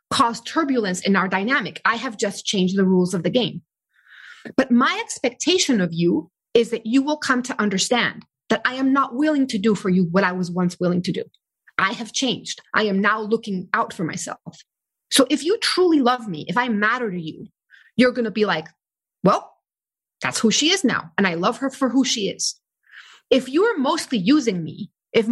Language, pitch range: English, 190-265 Hz